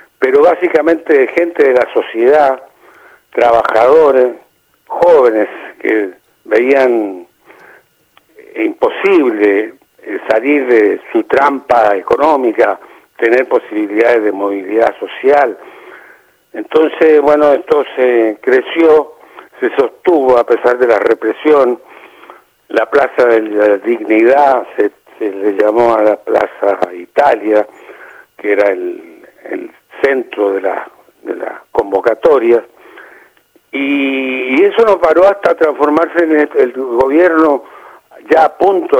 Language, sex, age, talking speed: Spanish, male, 70-89, 105 wpm